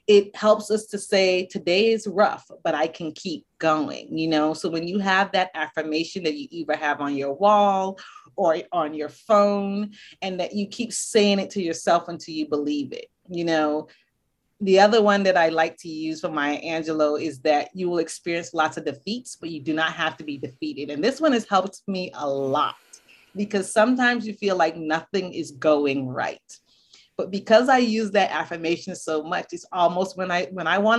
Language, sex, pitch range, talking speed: English, female, 160-210 Hz, 205 wpm